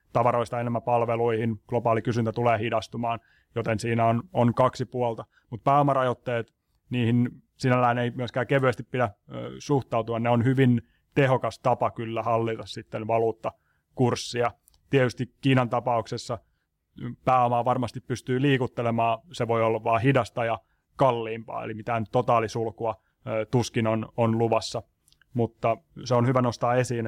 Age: 30-49